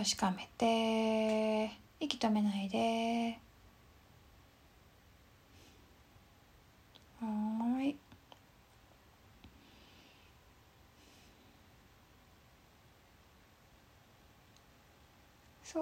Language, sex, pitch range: Japanese, female, 205-265 Hz